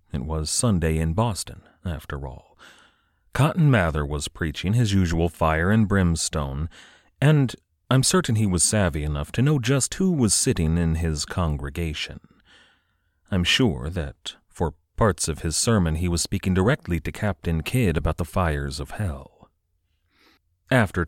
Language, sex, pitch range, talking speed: English, male, 80-110 Hz, 150 wpm